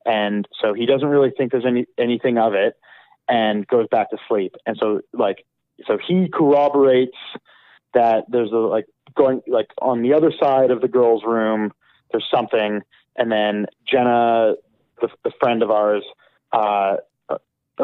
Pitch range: 110-130 Hz